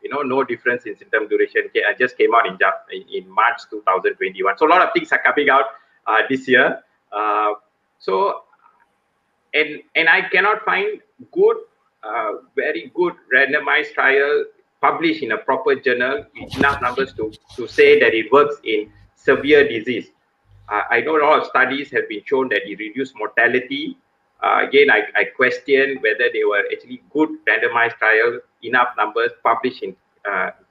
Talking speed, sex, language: 165 wpm, male, Malay